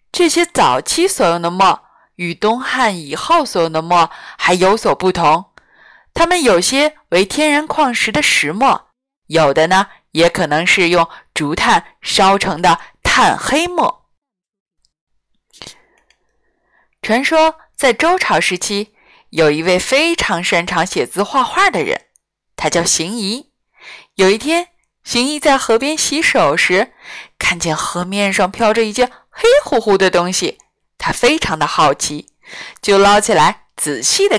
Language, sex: Chinese, female